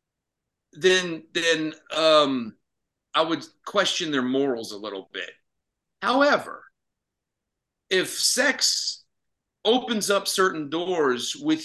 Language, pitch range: English, 135-165 Hz